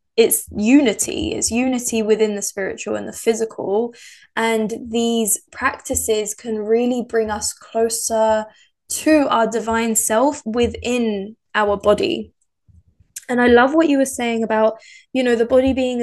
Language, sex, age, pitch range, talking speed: English, female, 10-29, 215-250 Hz, 140 wpm